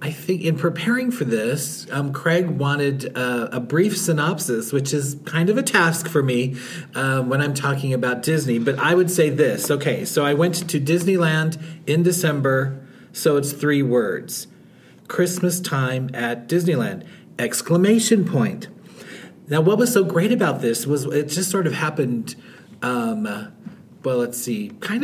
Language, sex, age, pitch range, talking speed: English, male, 40-59, 130-175 Hz, 165 wpm